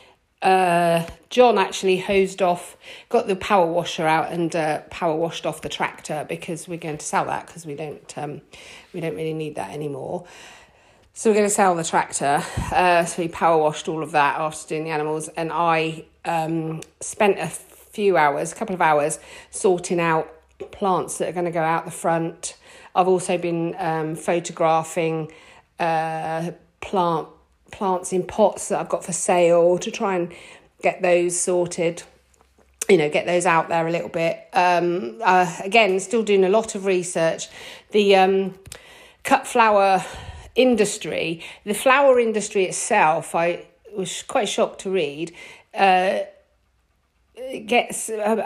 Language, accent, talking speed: English, British, 160 wpm